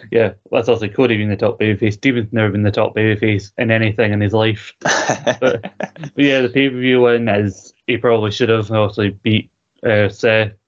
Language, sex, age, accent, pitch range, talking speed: English, male, 20-39, British, 105-115 Hz, 195 wpm